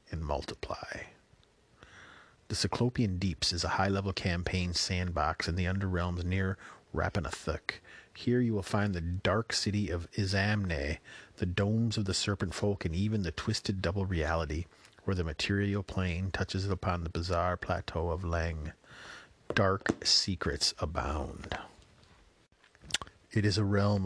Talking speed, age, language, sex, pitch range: 135 wpm, 40-59, English, male, 90-105 Hz